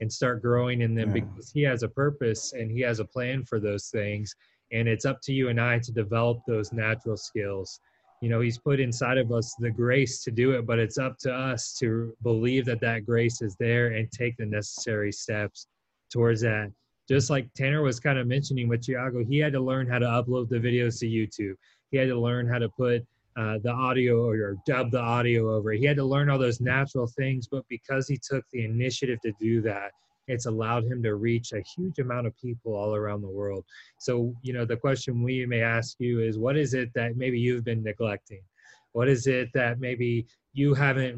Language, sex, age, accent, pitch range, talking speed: English, male, 20-39, American, 115-130 Hz, 225 wpm